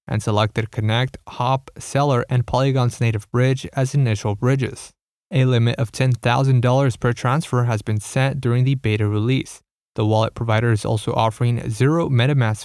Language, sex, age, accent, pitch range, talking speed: English, male, 20-39, American, 115-135 Hz, 155 wpm